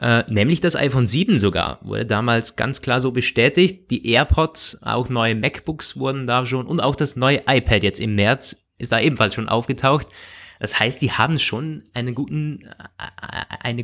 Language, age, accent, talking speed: German, 20-39, German, 165 wpm